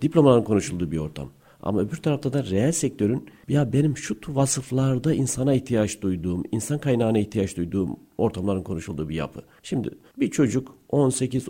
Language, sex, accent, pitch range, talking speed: Turkish, male, native, 105-140 Hz, 150 wpm